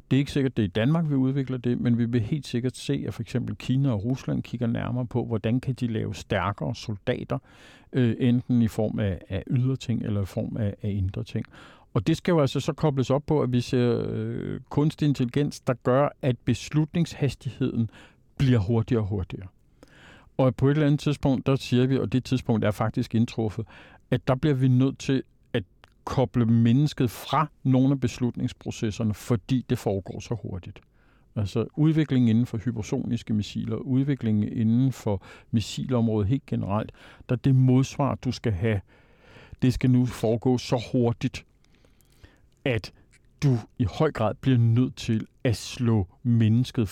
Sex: male